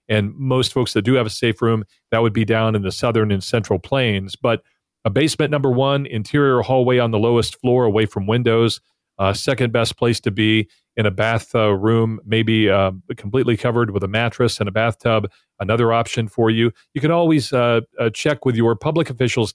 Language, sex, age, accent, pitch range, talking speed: English, male, 40-59, American, 110-130 Hz, 210 wpm